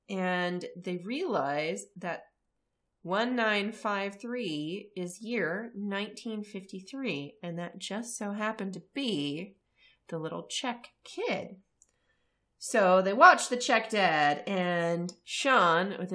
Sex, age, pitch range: female, 30-49, 180-245 Hz